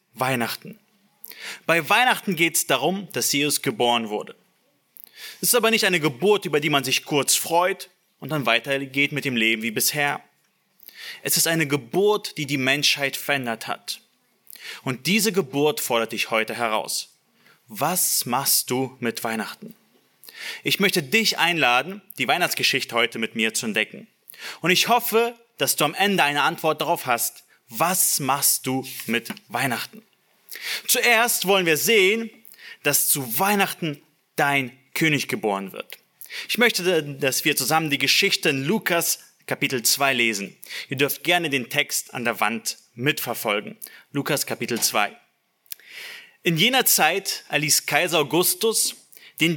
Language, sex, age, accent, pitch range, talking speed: German, male, 30-49, German, 135-195 Hz, 145 wpm